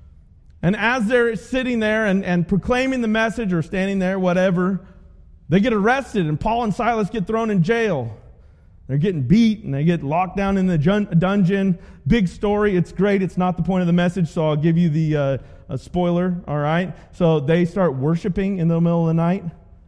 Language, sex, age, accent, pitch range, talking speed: English, male, 30-49, American, 155-215 Hz, 200 wpm